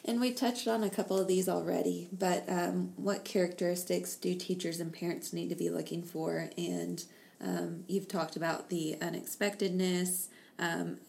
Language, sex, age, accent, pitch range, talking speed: English, female, 20-39, American, 160-190 Hz, 160 wpm